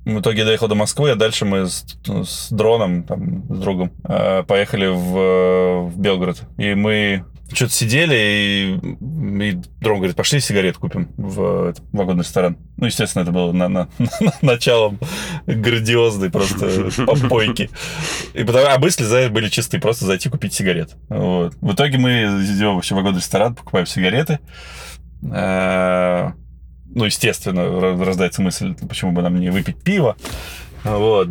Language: Russian